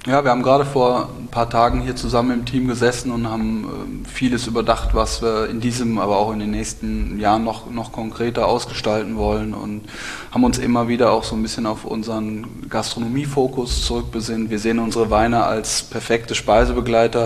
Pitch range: 110-120 Hz